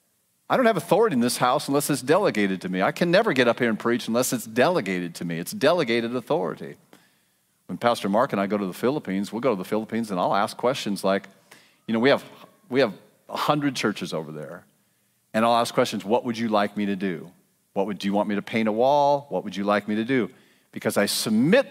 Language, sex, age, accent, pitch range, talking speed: English, male, 40-59, American, 100-140 Hz, 245 wpm